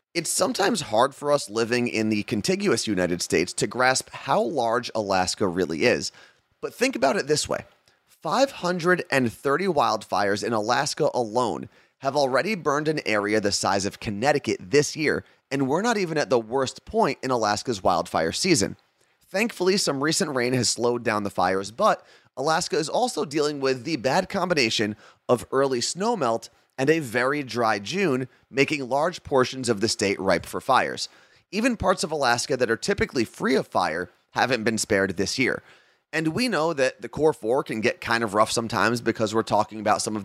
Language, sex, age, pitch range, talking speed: English, male, 30-49, 110-150 Hz, 180 wpm